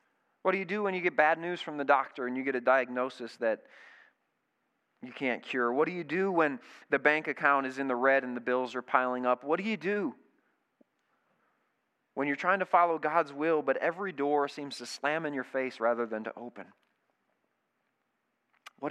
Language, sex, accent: English, male, American